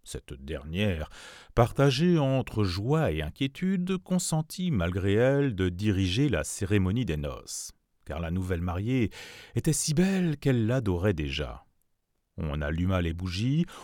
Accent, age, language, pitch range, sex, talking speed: French, 40-59, French, 85-140 Hz, male, 130 wpm